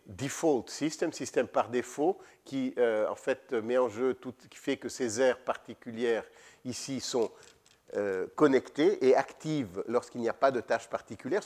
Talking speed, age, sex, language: 170 wpm, 50-69, male, French